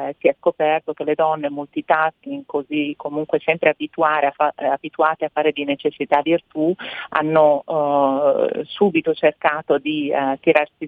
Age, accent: 30-49, native